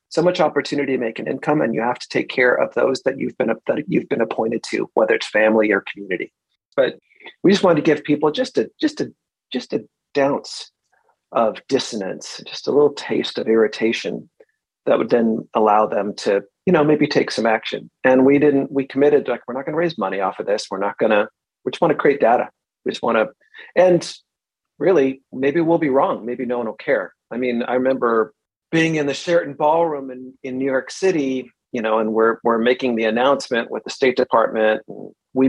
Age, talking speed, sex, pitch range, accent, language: 40-59, 220 wpm, male, 115-150 Hz, American, English